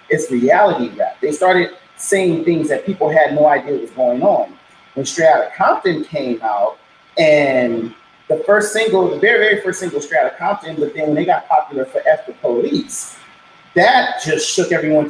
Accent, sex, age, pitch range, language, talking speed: American, male, 30-49, 155-205 Hz, English, 185 wpm